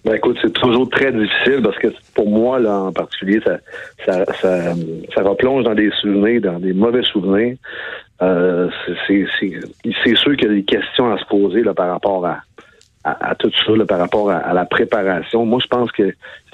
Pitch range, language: 100-125 Hz, French